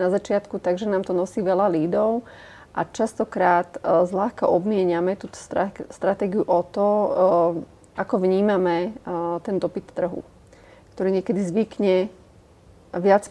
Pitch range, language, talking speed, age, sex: 180-205 Hz, English, 115 wpm, 30-49, female